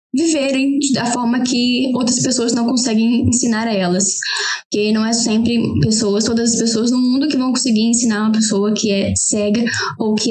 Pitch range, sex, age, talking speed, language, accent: 220-250 Hz, female, 10-29, 185 wpm, Portuguese, Brazilian